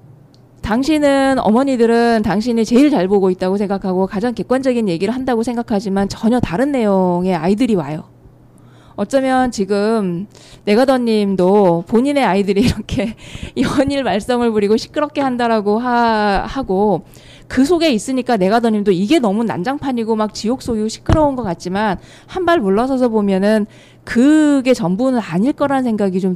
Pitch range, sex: 195-255 Hz, female